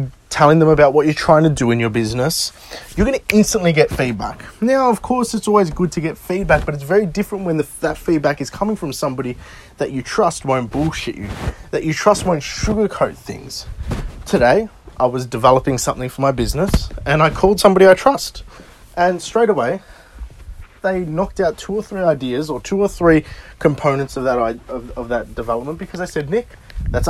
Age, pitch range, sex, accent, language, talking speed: 20-39, 120-180 Hz, male, Australian, English, 195 wpm